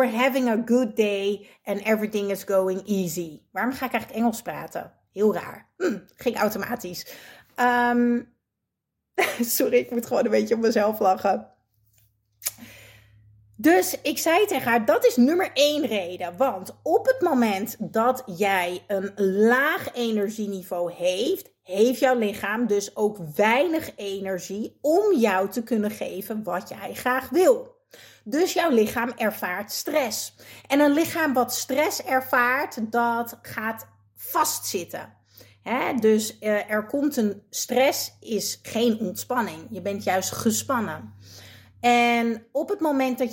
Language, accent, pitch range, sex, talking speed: Dutch, Dutch, 195-250 Hz, female, 135 wpm